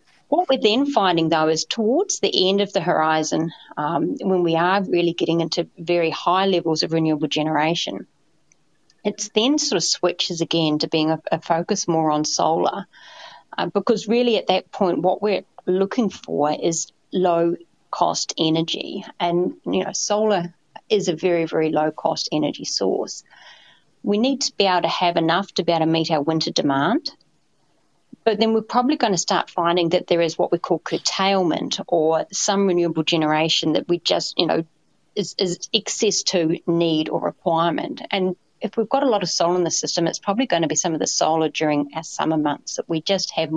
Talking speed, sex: 195 wpm, female